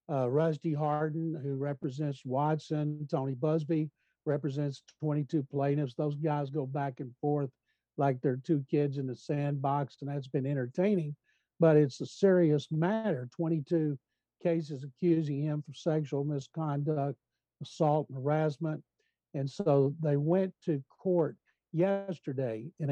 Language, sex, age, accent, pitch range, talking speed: English, male, 60-79, American, 145-170 Hz, 135 wpm